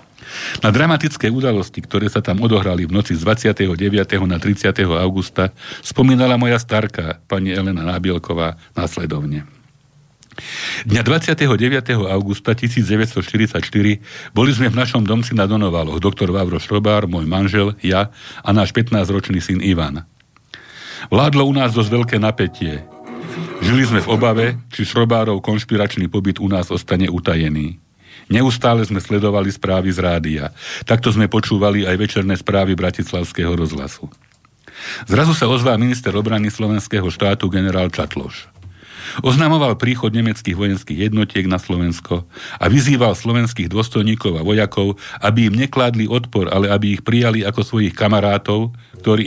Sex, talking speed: male, 135 wpm